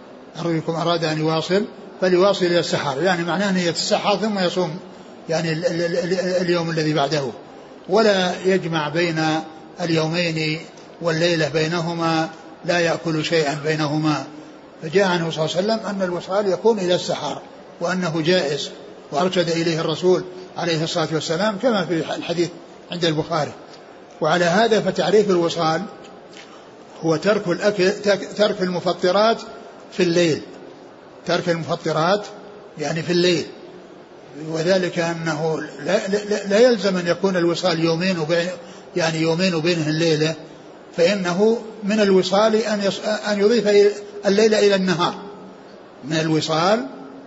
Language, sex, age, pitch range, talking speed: Arabic, male, 60-79, 165-205 Hz, 120 wpm